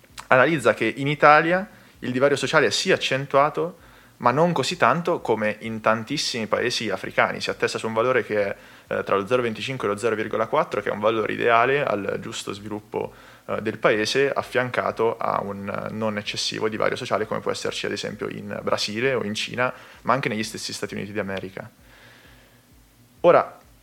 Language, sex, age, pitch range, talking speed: Italian, male, 20-39, 105-135 Hz, 170 wpm